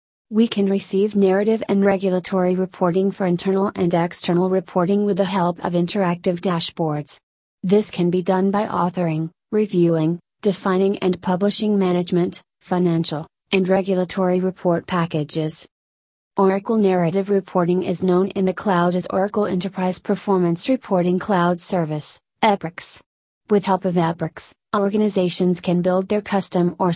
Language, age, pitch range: English, 30-49, 175-200 Hz